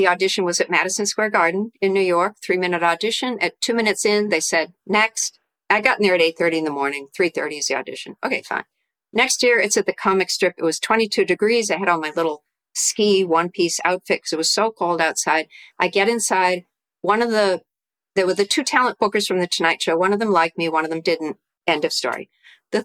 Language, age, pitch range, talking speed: English, 50-69, 170-210 Hz, 245 wpm